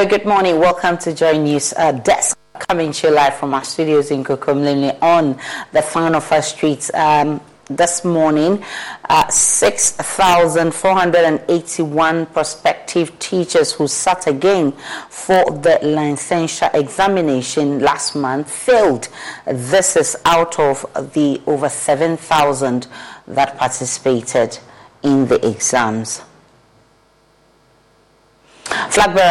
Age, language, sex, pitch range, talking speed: 40-59, English, female, 145-180 Hz, 105 wpm